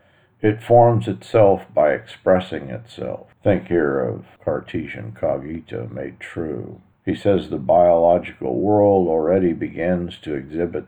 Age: 50-69